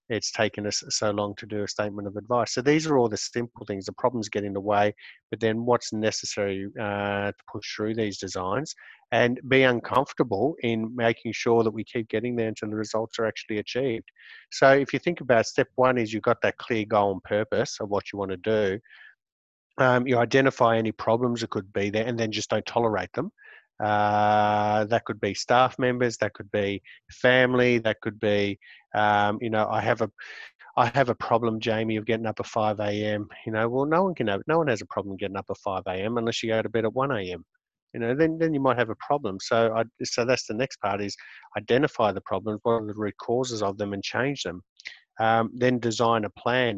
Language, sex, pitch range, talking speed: English, male, 105-120 Hz, 225 wpm